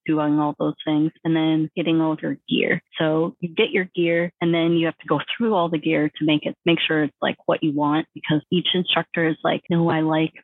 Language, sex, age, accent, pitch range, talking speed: English, female, 30-49, American, 155-170 Hz, 255 wpm